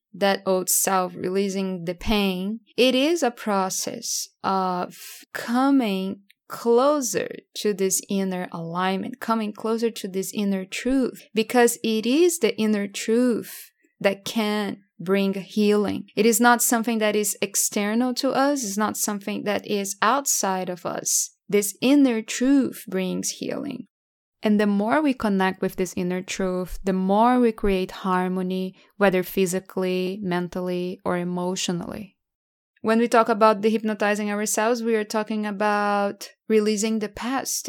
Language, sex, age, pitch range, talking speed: English, female, 20-39, 190-230 Hz, 140 wpm